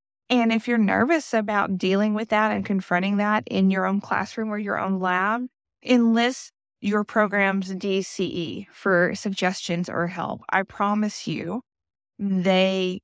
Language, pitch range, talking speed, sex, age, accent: English, 190-220 Hz, 145 wpm, female, 20-39, American